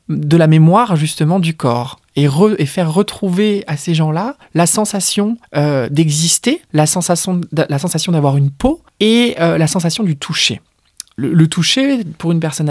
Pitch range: 140-180 Hz